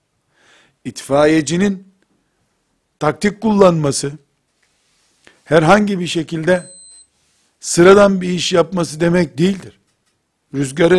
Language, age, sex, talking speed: Turkish, 60-79, male, 70 wpm